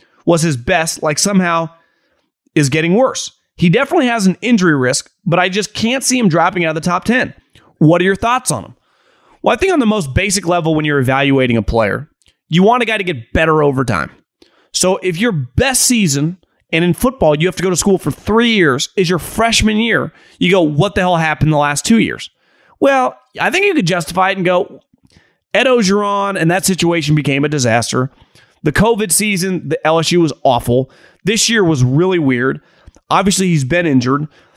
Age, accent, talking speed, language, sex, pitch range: 30-49, American, 205 wpm, English, male, 150-205 Hz